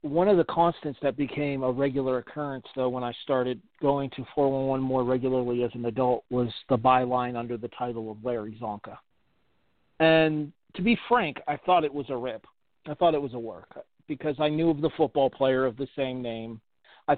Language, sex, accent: English, male, American